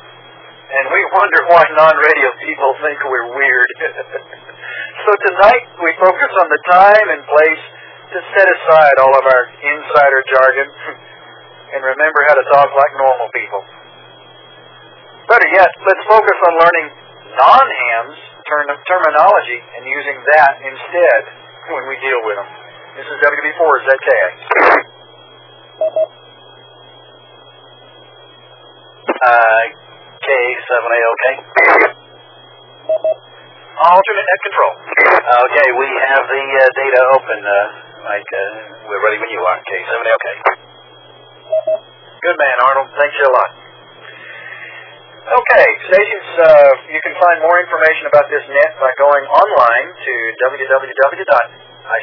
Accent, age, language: American, 50-69, English